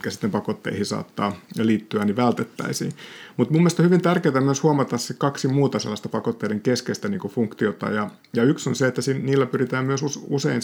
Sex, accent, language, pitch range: male, native, Finnish, 110-140 Hz